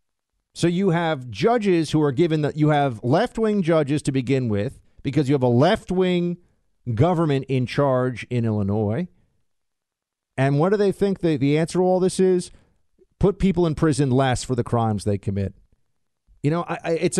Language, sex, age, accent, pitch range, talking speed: English, male, 50-69, American, 110-155 Hz, 180 wpm